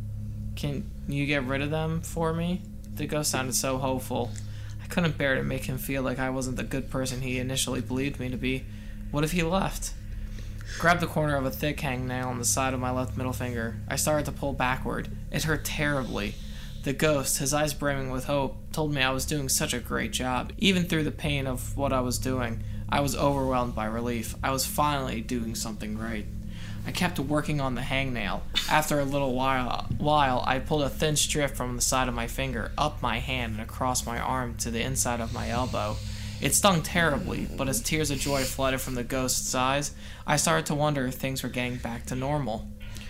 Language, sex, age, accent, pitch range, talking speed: English, male, 20-39, American, 115-145 Hz, 215 wpm